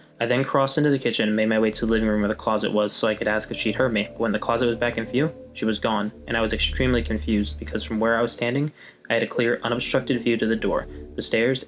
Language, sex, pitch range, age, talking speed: English, male, 105-120 Hz, 20-39, 305 wpm